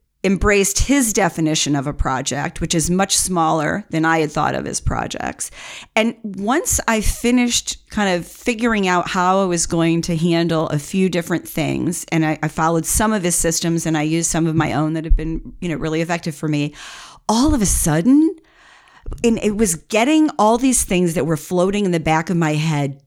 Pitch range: 155-205 Hz